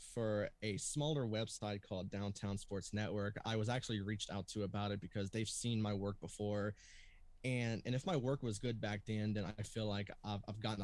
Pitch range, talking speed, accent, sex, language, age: 100-115 Hz, 210 wpm, American, male, English, 20-39